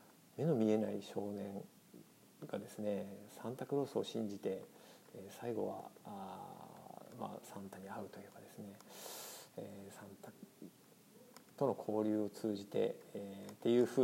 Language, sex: Japanese, male